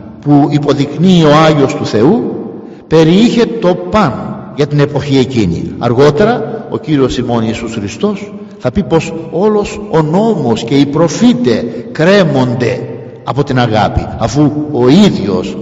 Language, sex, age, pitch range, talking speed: Greek, male, 50-69, 150-205 Hz, 135 wpm